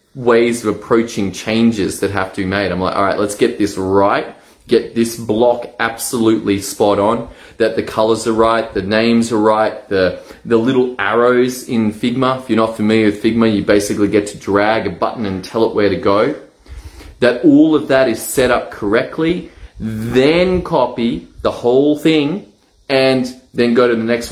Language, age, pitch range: English, 20-39, 105-130 Hz